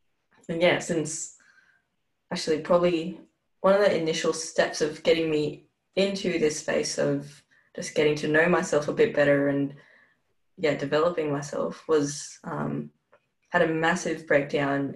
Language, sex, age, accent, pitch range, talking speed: English, female, 10-29, Australian, 150-185 Hz, 140 wpm